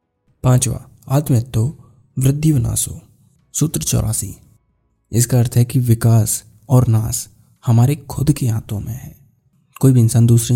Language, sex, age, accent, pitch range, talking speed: Hindi, male, 20-39, native, 115-135 Hz, 130 wpm